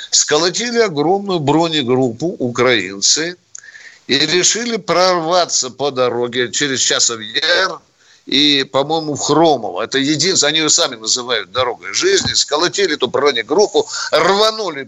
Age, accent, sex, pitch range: 60-79, native, male, 125-185 Hz